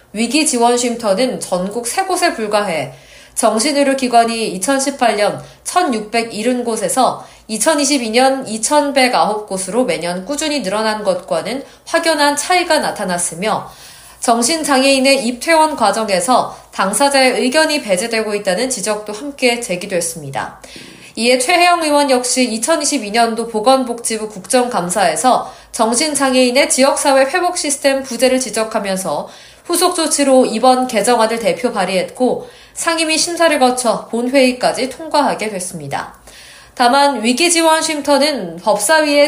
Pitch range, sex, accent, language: 215-285 Hz, female, native, Korean